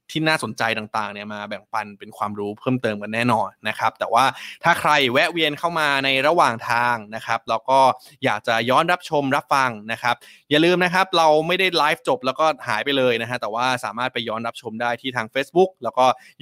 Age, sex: 20-39, male